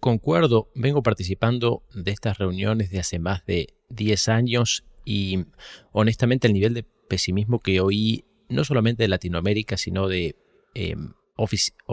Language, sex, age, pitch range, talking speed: Spanish, male, 30-49, 95-125 Hz, 135 wpm